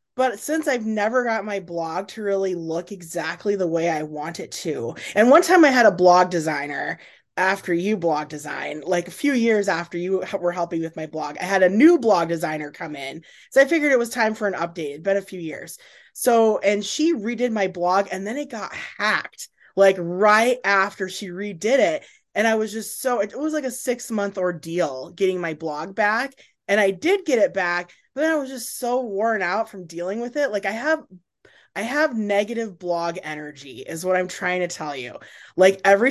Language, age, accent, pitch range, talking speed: English, 20-39, American, 170-225 Hz, 215 wpm